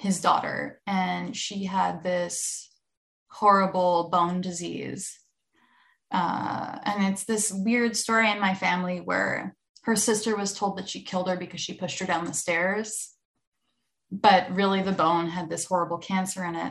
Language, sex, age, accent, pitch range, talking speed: English, female, 20-39, American, 180-215 Hz, 160 wpm